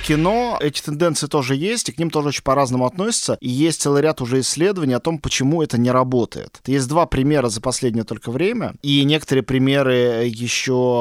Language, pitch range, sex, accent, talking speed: Russian, 120-155 Hz, male, native, 190 wpm